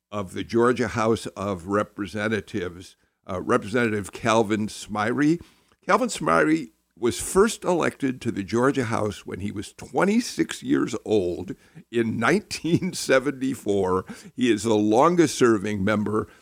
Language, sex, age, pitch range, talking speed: English, male, 50-69, 100-120 Hz, 120 wpm